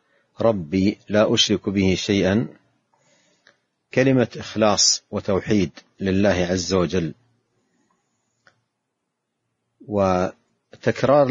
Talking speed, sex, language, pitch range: 65 wpm, male, Arabic, 100-115 Hz